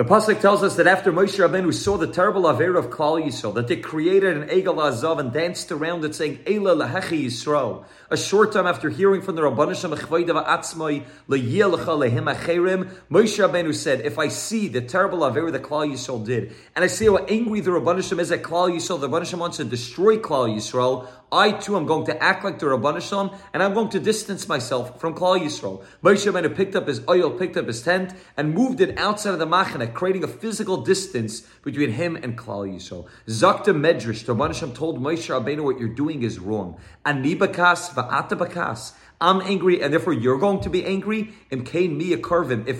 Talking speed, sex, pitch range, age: 190 wpm, male, 135-185 Hz, 30-49